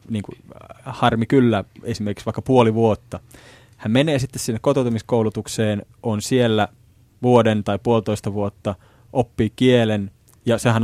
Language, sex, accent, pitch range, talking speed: Finnish, male, native, 105-125 Hz, 120 wpm